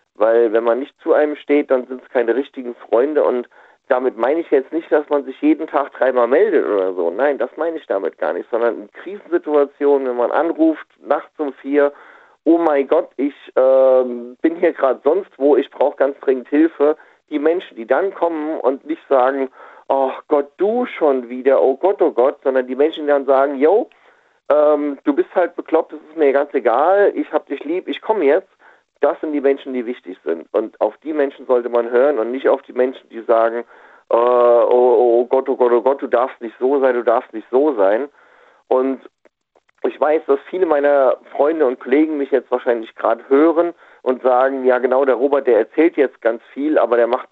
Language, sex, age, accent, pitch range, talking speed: German, male, 50-69, German, 125-160 Hz, 210 wpm